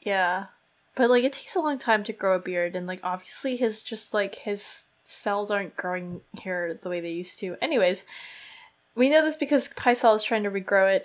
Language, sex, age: English, female, 20-39